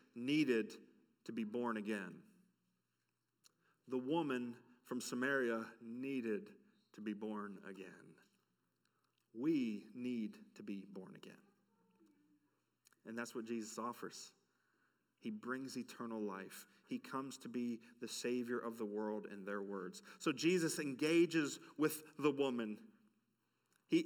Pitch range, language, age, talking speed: 130-185 Hz, English, 40-59, 120 wpm